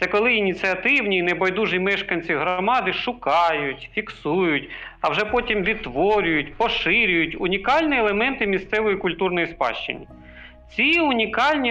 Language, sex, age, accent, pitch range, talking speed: Ukrainian, male, 40-59, native, 180-245 Hz, 110 wpm